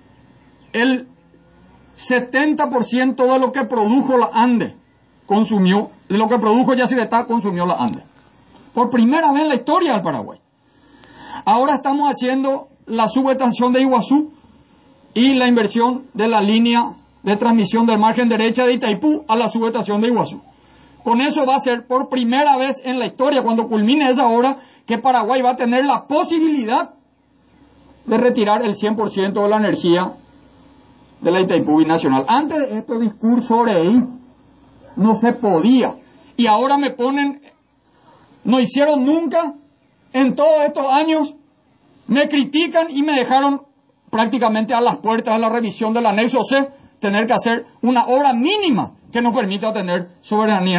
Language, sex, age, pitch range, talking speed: Spanish, male, 40-59, 220-275 Hz, 150 wpm